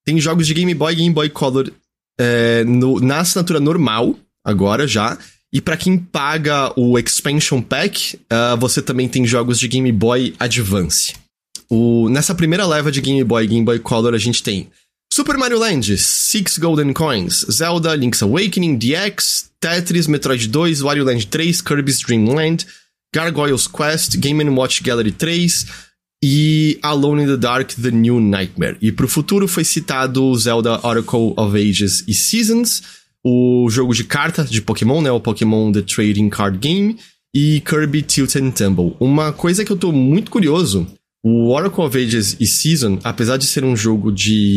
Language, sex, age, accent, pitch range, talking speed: English, male, 20-39, Brazilian, 115-155 Hz, 170 wpm